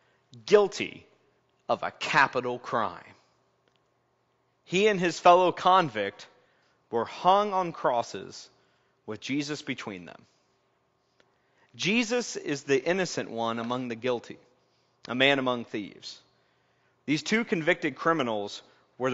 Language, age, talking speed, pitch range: English, 40-59, 110 wpm, 130-205 Hz